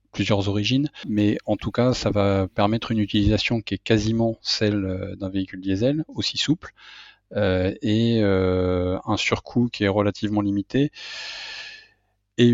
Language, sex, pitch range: French, male, 100-115 Hz